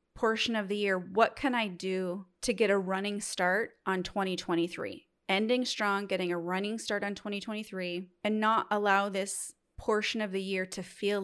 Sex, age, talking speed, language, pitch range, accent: female, 30-49, 175 wpm, English, 190-220 Hz, American